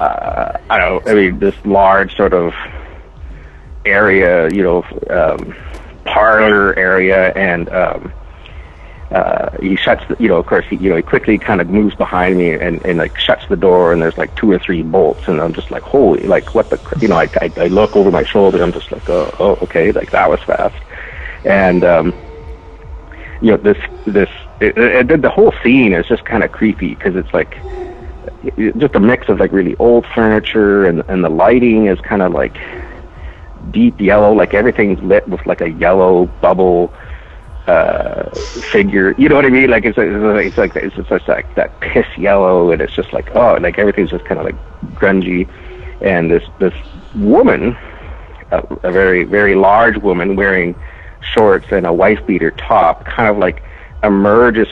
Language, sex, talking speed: English, male, 190 wpm